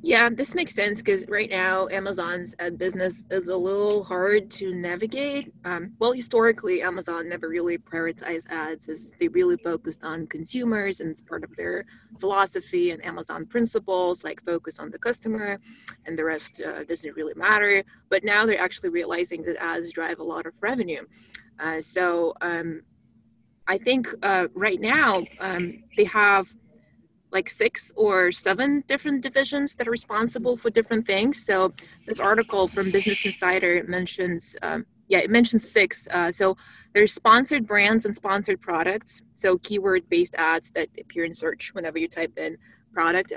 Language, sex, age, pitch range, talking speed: English, female, 20-39, 175-225 Hz, 165 wpm